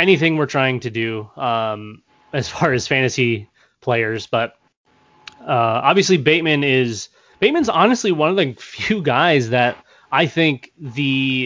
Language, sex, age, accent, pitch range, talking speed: English, male, 20-39, American, 130-165 Hz, 140 wpm